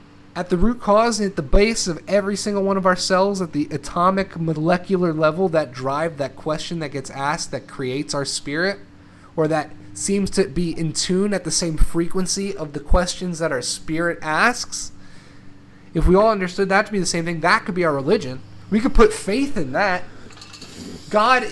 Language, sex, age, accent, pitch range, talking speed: English, male, 30-49, American, 145-200 Hz, 195 wpm